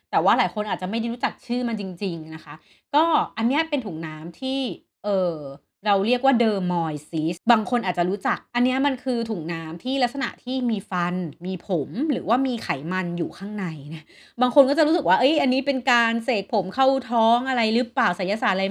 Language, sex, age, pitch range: Thai, female, 30-49, 175-245 Hz